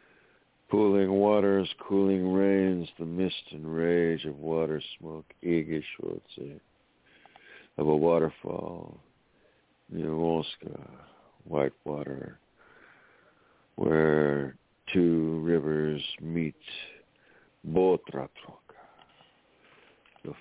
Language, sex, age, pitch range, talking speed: English, male, 60-79, 75-85 Hz, 70 wpm